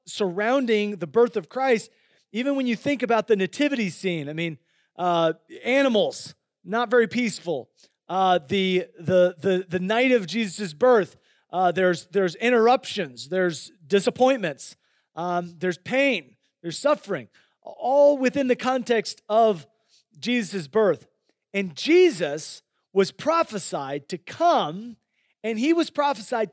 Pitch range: 180-250 Hz